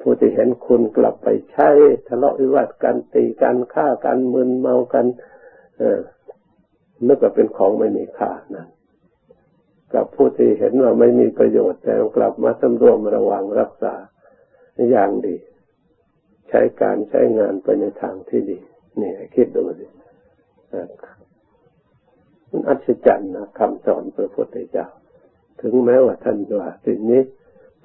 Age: 60-79